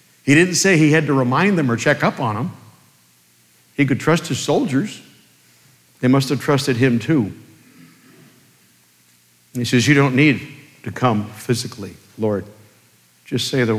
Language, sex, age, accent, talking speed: English, male, 60-79, American, 155 wpm